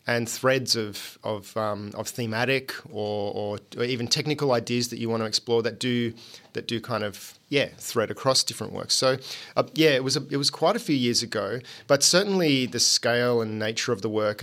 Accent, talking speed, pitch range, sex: Australian, 210 wpm, 110-135 Hz, male